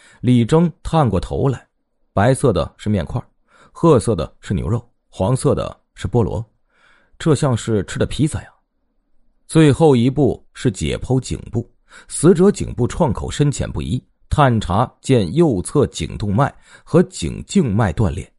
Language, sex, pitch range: Chinese, male, 105-145 Hz